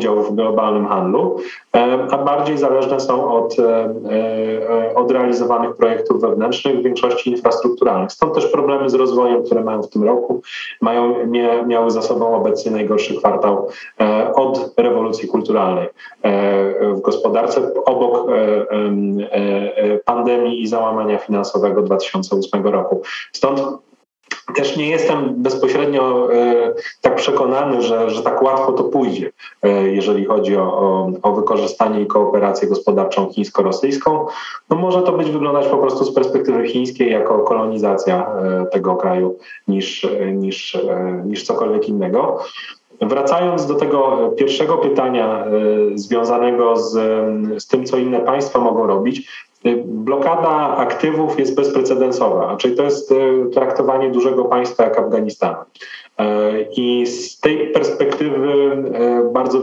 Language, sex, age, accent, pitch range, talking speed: Polish, male, 30-49, native, 105-135 Hz, 115 wpm